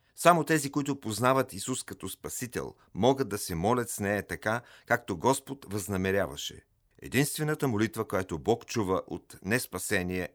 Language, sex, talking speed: Bulgarian, male, 140 wpm